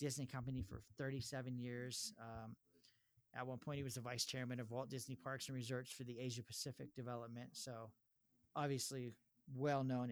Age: 40-59